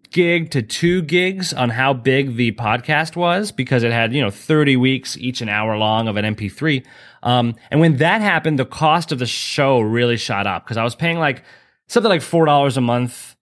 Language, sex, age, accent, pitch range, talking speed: English, male, 20-39, American, 115-160 Hz, 210 wpm